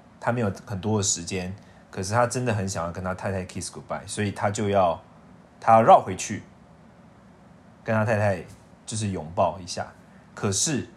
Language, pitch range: Chinese, 95-145 Hz